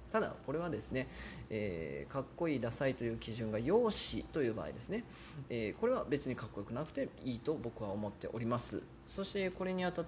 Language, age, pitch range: Japanese, 20-39, 110-150 Hz